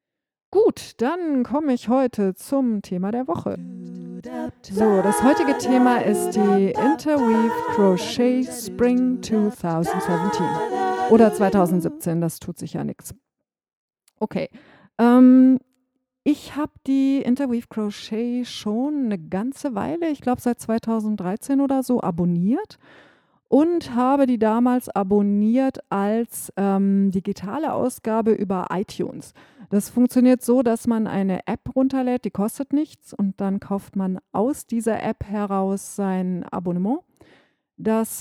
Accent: German